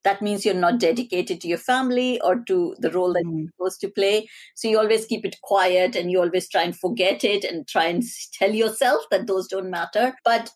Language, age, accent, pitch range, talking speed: English, 50-69, Indian, 180-255 Hz, 225 wpm